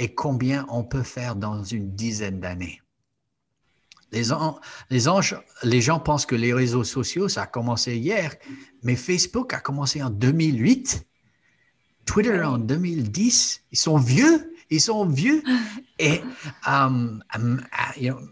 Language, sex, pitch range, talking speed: French, male, 125-175 Hz, 140 wpm